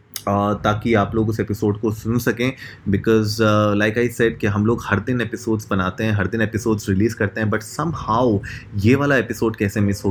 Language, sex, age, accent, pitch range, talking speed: Hindi, male, 20-39, native, 105-125 Hz, 210 wpm